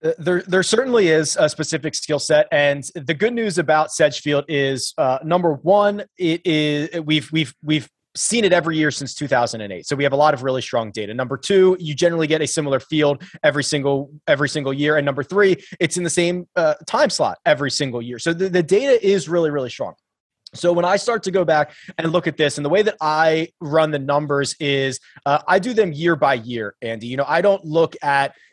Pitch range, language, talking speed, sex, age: 145-180 Hz, English, 225 wpm, male, 30-49